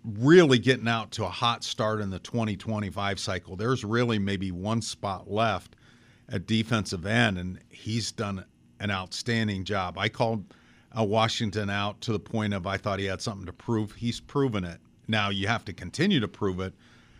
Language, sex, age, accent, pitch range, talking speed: English, male, 50-69, American, 100-115 Hz, 180 wpm